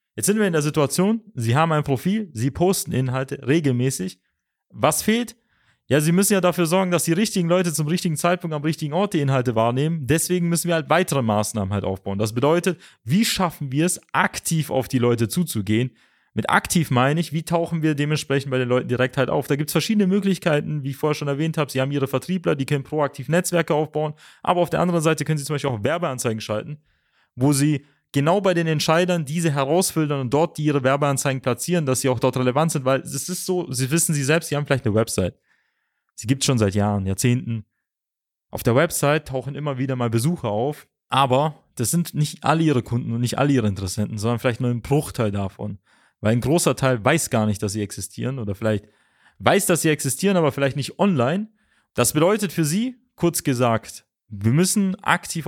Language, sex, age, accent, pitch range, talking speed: German, male, 30-49, German, 125-170 Hz, 215 wpm